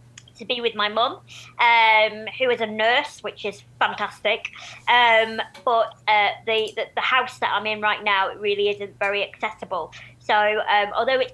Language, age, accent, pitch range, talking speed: English, 30-49, British, 205-240 Hz, 175 wpm